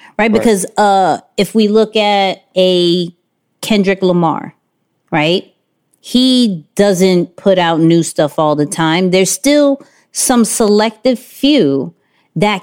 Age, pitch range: 30-49, 175-210 Hz